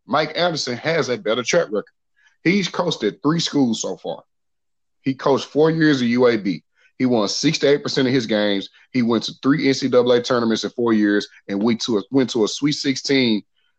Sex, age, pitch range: male, 30-49, 115-145 Hz